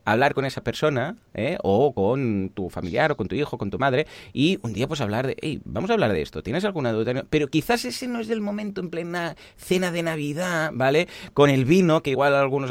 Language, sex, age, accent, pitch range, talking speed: Spanish, male, 30-49, Spanish, 110-160 Hz, 235 wpm